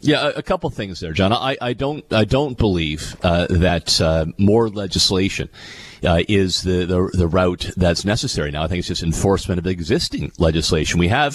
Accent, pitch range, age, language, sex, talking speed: American, 90-115 Hz, 40-59, English, male, 190 wpm